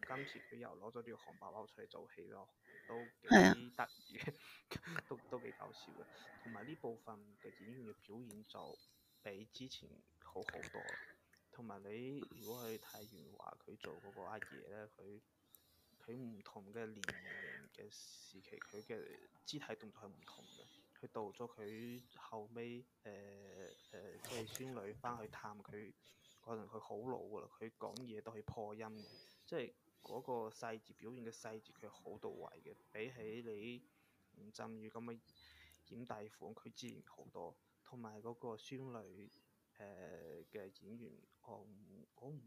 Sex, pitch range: male, 110-125 Hz